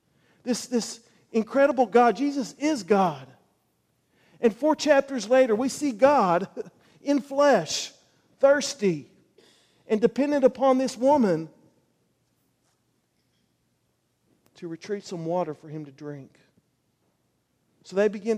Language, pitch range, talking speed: English, 215-275 Hz, 110 wpm